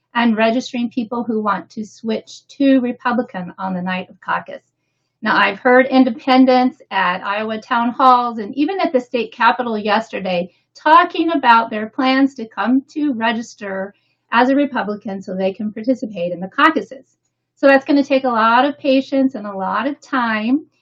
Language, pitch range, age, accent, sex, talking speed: English, 205-265 Hz, 40-59, American, female, 175 wpm